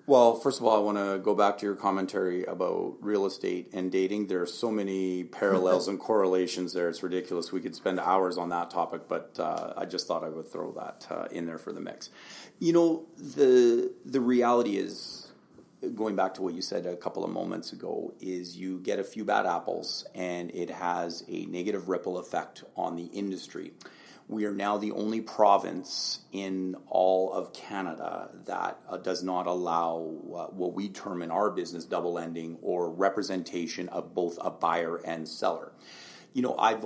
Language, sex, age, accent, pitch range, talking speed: English, male, 40-59, American, 90-105 Hz, 190 wpm